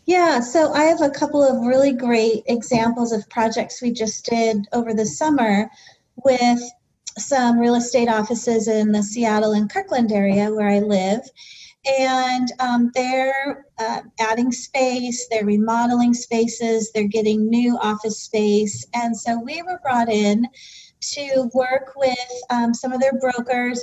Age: 30-49